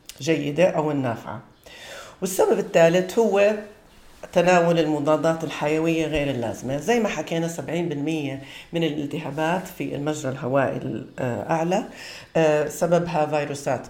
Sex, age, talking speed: female, 50-69, 100 wpm